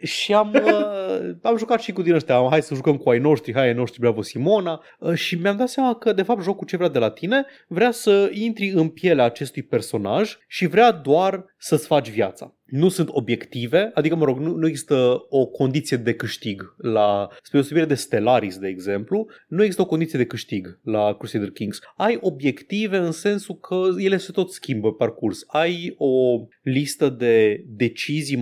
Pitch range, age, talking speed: 120-180 Hz, 20-39, 190 wpm